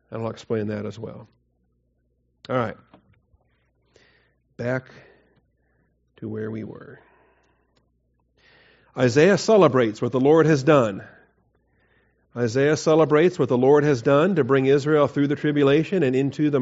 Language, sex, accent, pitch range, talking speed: English, male, American, 120-155 Hz, 130 wpm